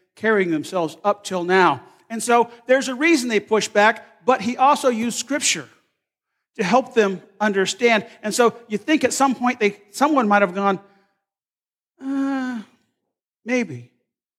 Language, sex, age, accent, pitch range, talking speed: English, male, 40-59, American, 180-235 Hz, 150 wpm